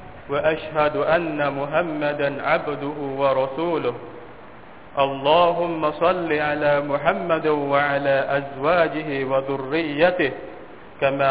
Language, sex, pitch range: Thai, male, 140-175 Hz